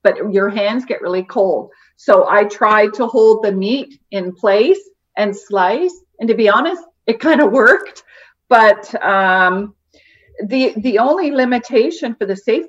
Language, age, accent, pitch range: English, 40-59, American, 200-280 Hz